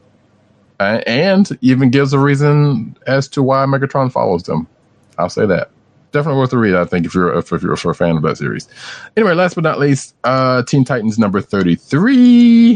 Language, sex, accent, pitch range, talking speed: English, male, American, 95-135 Hz, 190 wpm